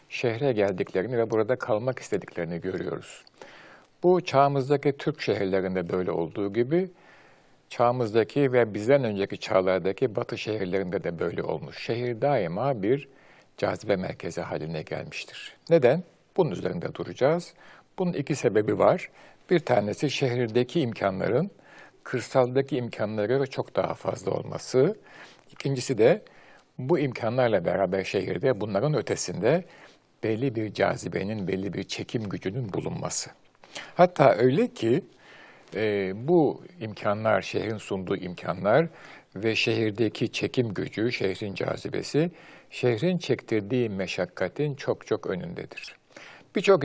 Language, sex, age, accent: Turkish, male, 60-79, native